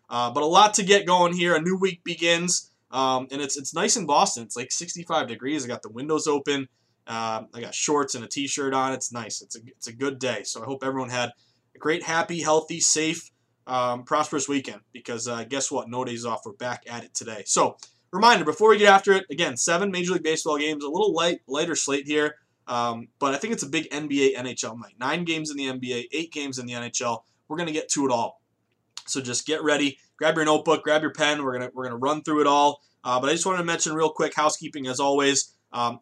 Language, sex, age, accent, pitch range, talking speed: English, male, 20-39, American, 125-155 Hz, 245 wpm